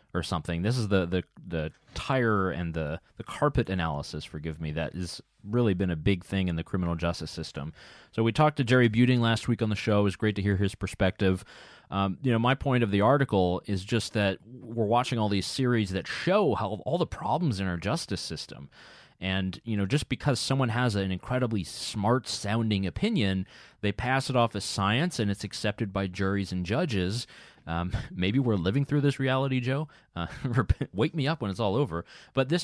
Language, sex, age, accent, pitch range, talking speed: English, male, 30-49, American, 95-125 Hz, 210 wpm